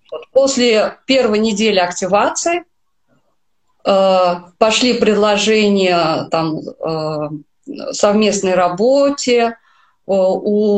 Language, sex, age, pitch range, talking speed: Russian, female, 30-49, 185-230 Hz, 55 wpm